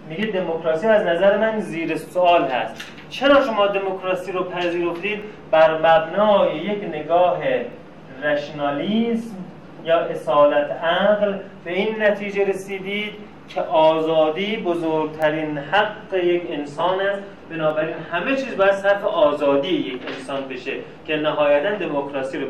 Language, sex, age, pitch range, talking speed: Persian, male, 30-49, 155-200 Hz, 120 wpm